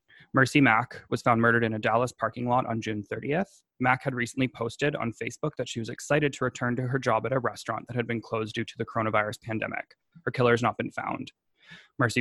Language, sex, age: English, male, 20-39